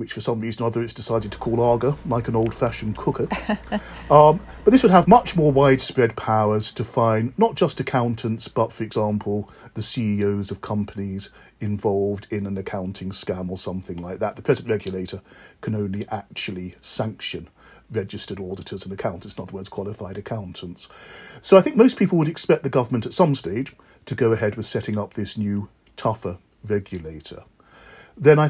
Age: 40-59